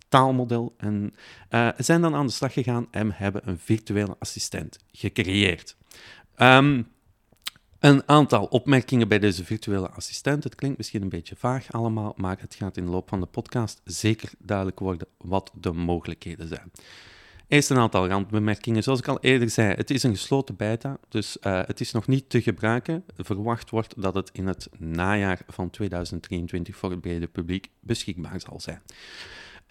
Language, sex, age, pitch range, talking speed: Dutch, male, 40-59, 95-125 Hz, 170 wpm